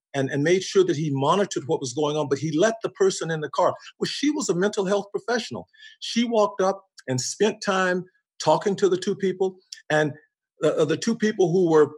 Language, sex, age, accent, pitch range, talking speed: English, male, 50-69, American, 145-195 Hz, 220 wpm